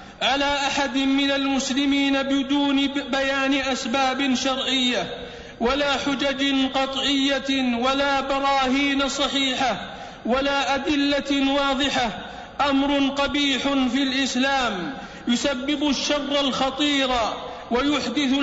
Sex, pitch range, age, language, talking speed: male, 265-280 Hz, 50-69, Arabic, 80 wpm